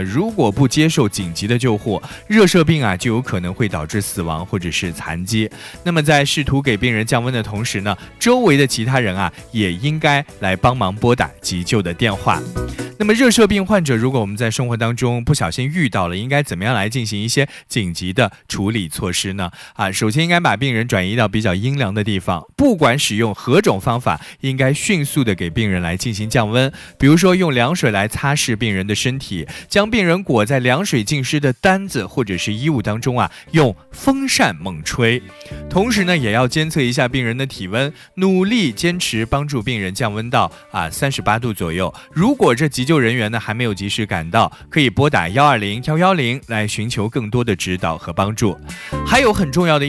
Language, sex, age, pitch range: Chinese, male, 20-39, 100-145 Hz